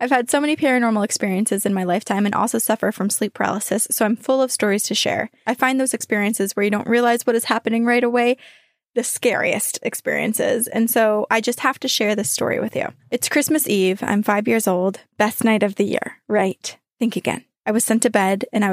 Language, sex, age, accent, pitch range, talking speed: English, female, 20-39, American, 205-245 Hz, 230 wpm